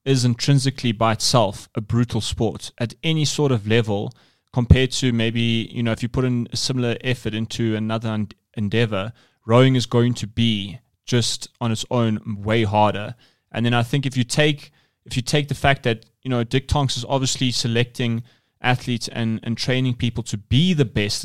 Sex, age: male, 20-39